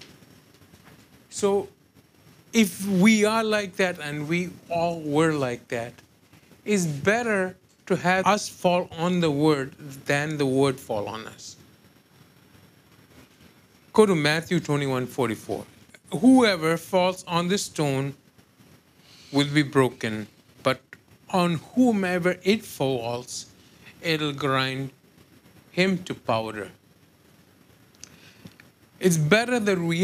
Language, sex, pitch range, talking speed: English, male, 135-180 Hz, 110 wpm